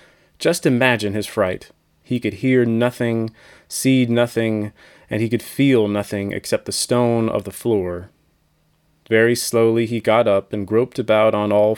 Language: English